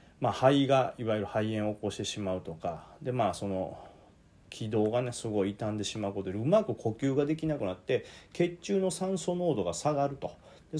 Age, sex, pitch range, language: 40-59, male, 95-135 Hz, Japanese